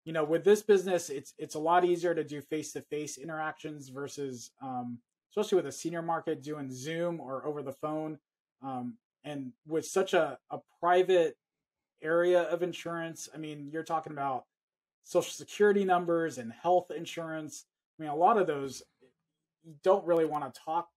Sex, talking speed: male, 175 wpm